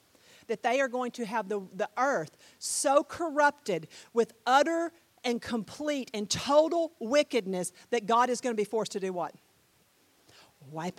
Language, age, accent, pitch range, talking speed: English, 40-59, American, 180-285 Hz, 160 wpm